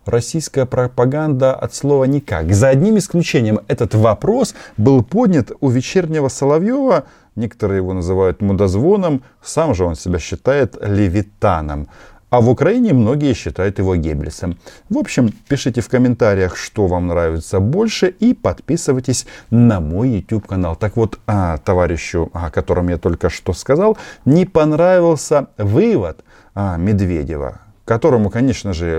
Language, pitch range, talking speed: Russian, 90-135 Hz, 130 wpm